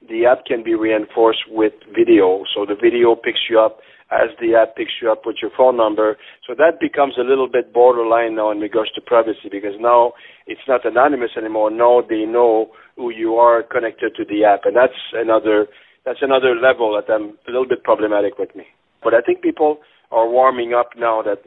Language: English